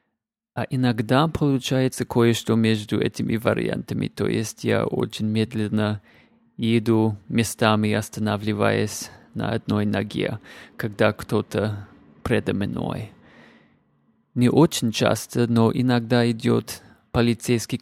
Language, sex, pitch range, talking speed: Russian, male, 110-125 Hz, 100 wpm